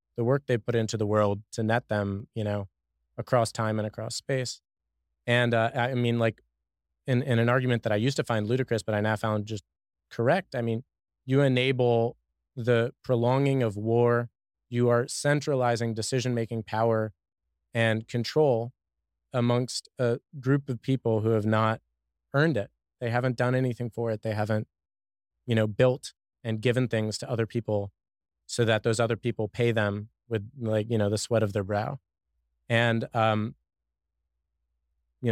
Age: 20-39